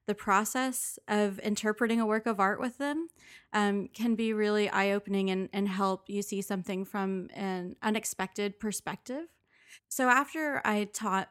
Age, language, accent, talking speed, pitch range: 20-39, English, American, 155 wpm, 190-215 Hz